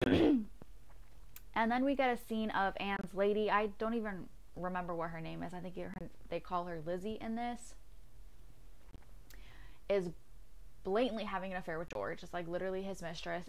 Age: 10-29